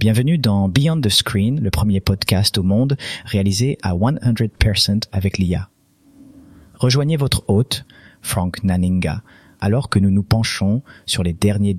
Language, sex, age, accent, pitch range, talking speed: French, male, 40-59, French, 100-120 Hz, 145 wpm